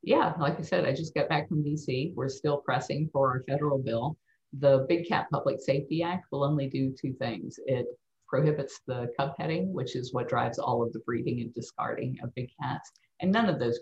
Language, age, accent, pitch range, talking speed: English, 50-69, American, 125-155 Hz, 215 wpm